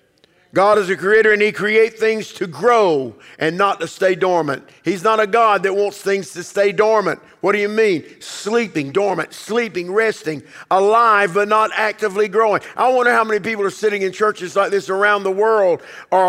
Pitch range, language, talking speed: 140-210 Hz, English, 195 wpm